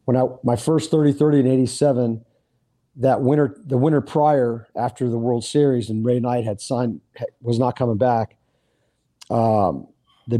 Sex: male